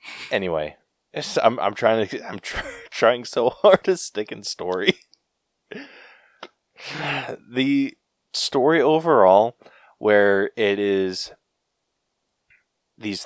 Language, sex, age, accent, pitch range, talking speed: English, male, 20-39, American, 90-115 Hz, 100 wpm